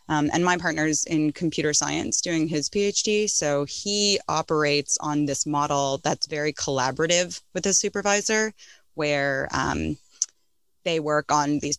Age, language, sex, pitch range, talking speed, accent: 20-39, English, female, 145-180 Hz, 145 wpm, American